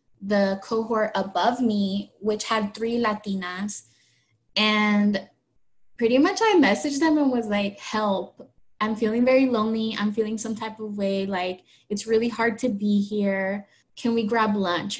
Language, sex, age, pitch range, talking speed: English, female, 10-29, 195-225 Hz, 155 wpm